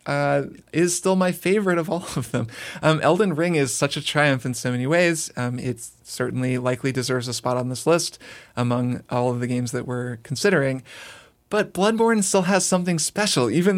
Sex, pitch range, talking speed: male, 125-150 Hz, 195 wpm